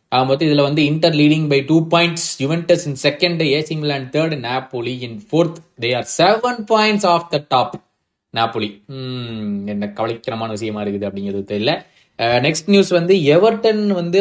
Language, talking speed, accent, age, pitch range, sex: Tamil, 95 wpm, native, 20-39, 120-155 Hz, male